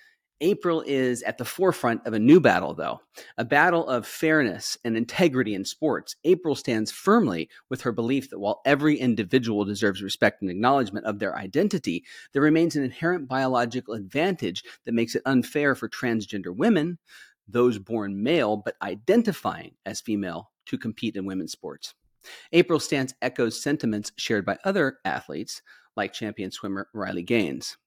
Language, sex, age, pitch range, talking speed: English, male, 40-59, 110-145 Hz, 155 wpm